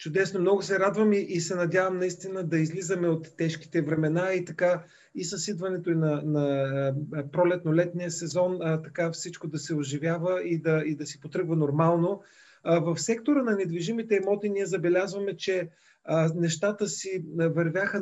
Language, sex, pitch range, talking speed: Bulgarian, male, 160-185 Hz, 165 wpm